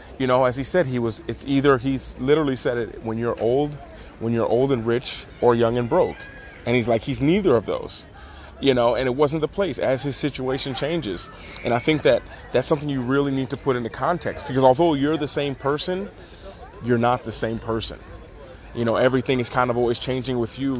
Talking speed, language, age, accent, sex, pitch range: 220 wpm, English, 30-49, American, male, 115-140 Hz